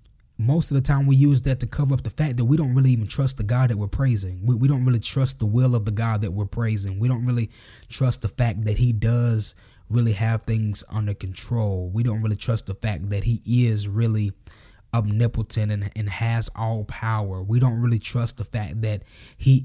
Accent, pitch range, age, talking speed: American, 105-125 Hz, 20-39, 225 wpm